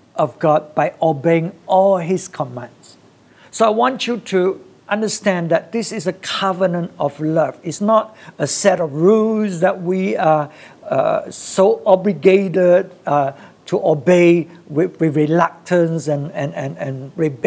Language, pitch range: English, 160-200 Hz